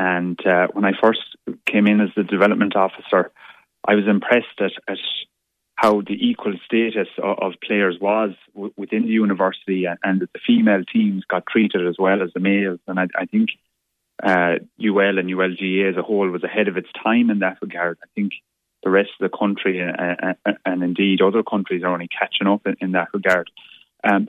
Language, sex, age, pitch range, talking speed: English, male, 20-39, 90-110 Hz, 200 wpm